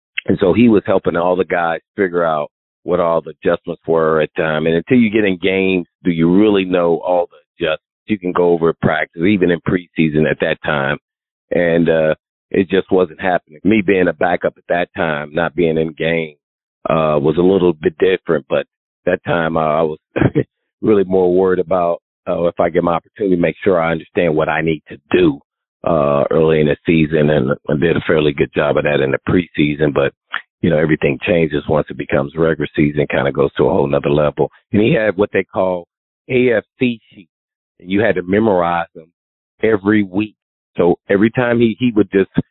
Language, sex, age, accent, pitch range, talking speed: English, male, 40-59, American, 80-100 Hz, 210 wpm